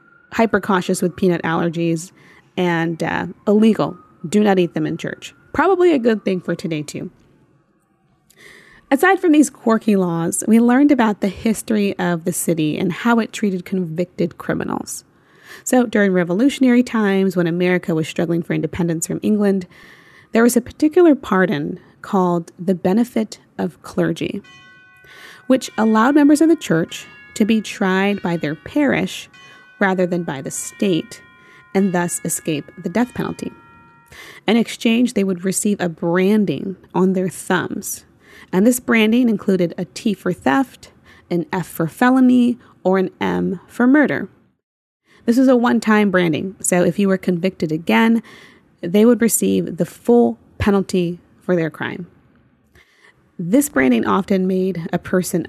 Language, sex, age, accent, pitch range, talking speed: English, female, 30-49, American, 175-230 Hz, 150 wpm